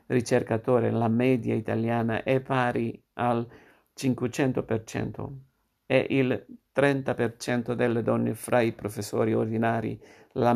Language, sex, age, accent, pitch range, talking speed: Italian, male, 50-69, native, 115-130 Hz, 100 wpm